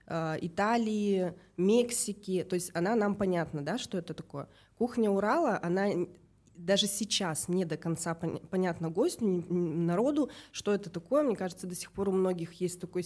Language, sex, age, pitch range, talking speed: Russian, female, 20-39, 165-195 Hz, 155 wpm